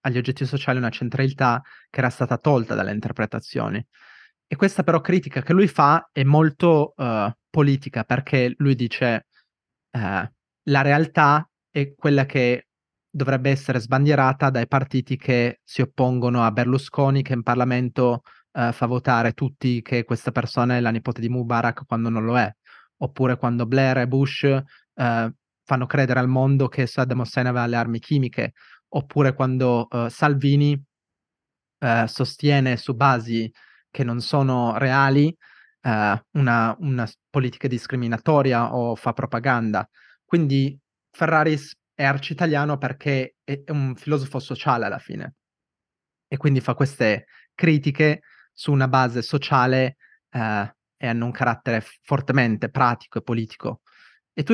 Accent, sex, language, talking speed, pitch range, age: native, male, Italian, 130 wpm, 120-140 Hz, 20-39